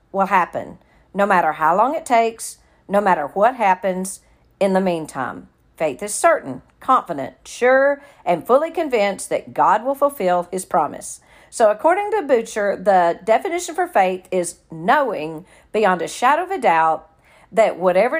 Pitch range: 180-255 Hz